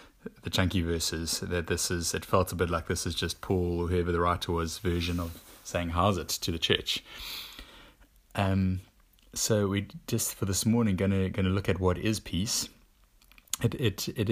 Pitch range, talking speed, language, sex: 85-95 Hz, 190 wpm, English, male